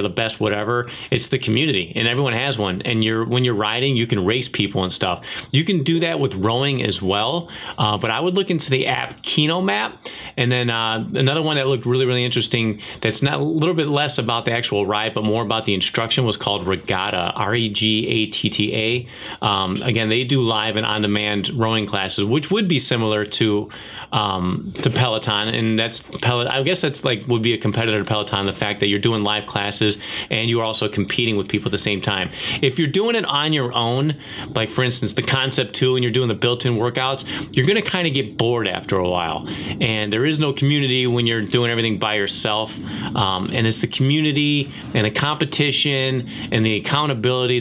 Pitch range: 105-130 Hz